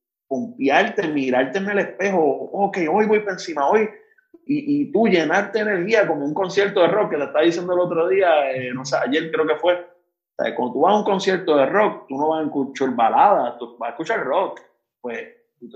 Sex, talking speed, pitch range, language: male, 230 wpm, 120-180 Hz, Spanish